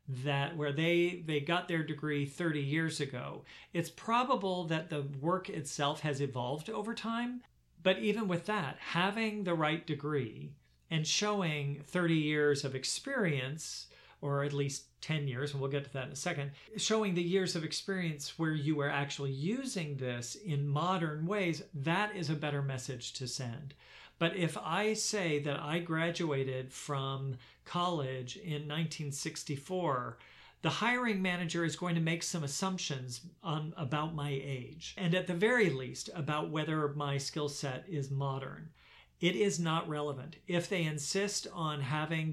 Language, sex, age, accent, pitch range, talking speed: English, male, 40-59, American, 140-175 Hz, 160 wpm